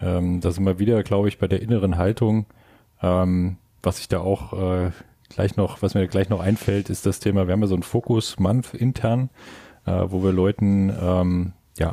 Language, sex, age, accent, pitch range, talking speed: German, male, 30-49, German, 95-110 Hz, 175 wpm